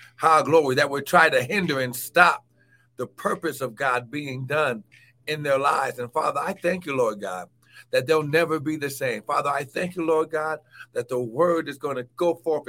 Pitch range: 125-170 Hz